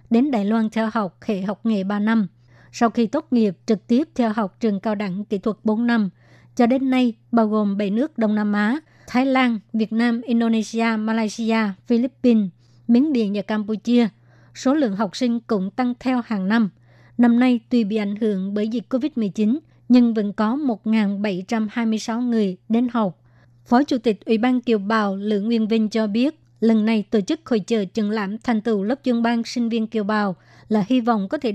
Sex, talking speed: male, 200 wpm